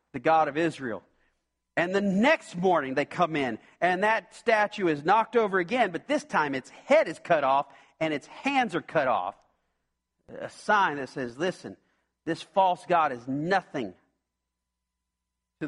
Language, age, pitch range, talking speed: English, 40-59, 125-190 Hz, 160 wpm